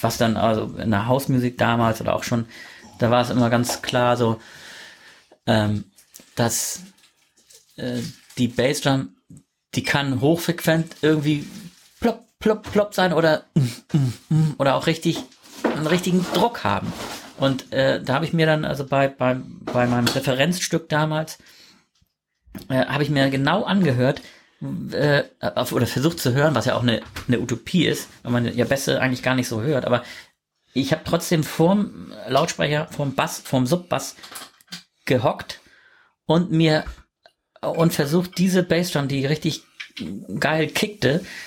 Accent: German